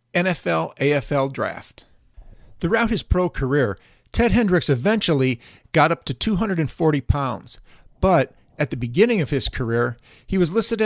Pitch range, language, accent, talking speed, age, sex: 135-190 Hz, English, American, 135 wpm, 50-69, male